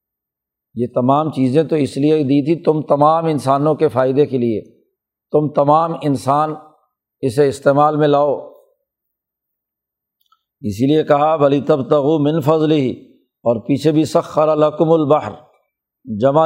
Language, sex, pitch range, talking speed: Urdu, male, 140-160 Hz, 130 wpm